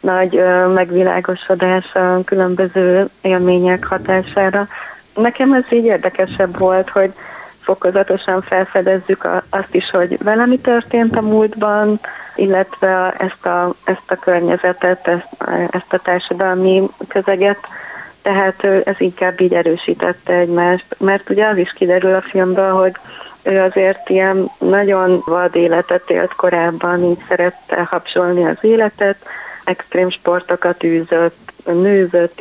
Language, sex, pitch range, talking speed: Hungarian, female, 175-190 Hz, 120 wpm